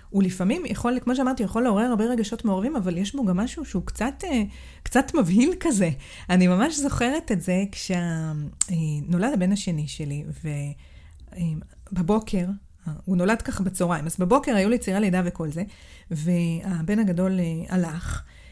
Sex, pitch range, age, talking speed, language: female, 180-245 Hz, 40-59, 145 wpm, Hebrew